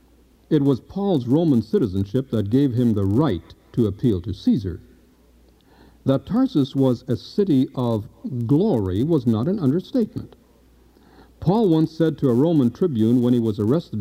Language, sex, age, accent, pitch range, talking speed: English, male, 60-79, American, 105-150 Hz, 155 wpm